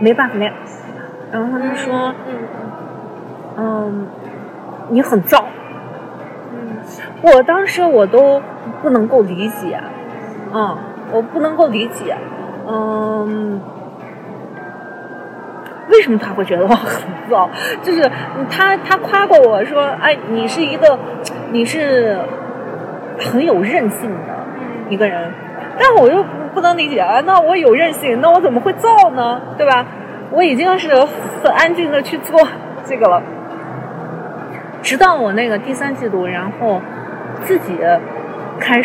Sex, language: female, Chinese